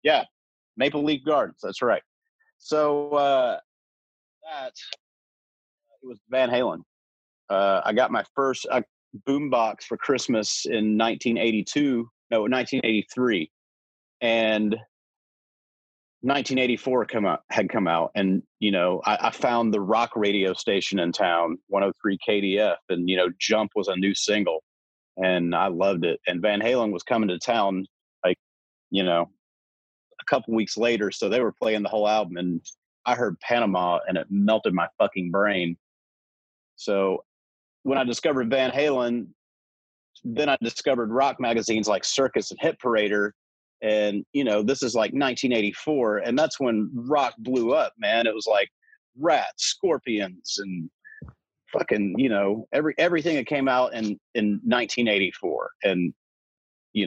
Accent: American